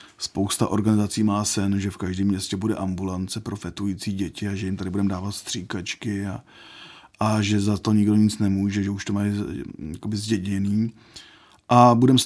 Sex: male